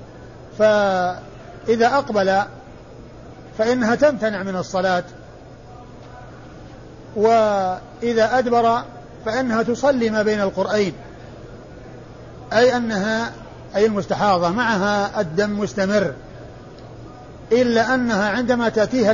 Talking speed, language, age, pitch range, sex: 75 wpm, Arabic, 50-69, 175-225 Hz, male